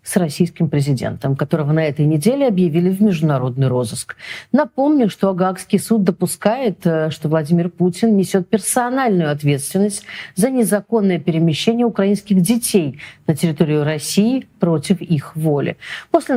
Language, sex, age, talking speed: Russian, female, 40-59, 125 wpm